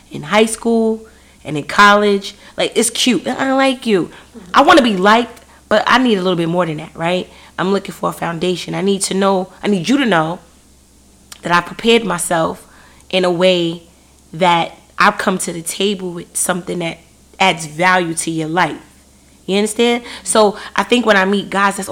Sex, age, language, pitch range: female, 30-49, English, 180-250 Hz